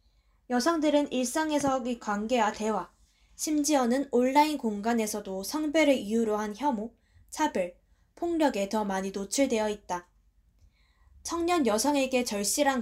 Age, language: 20-39, Korean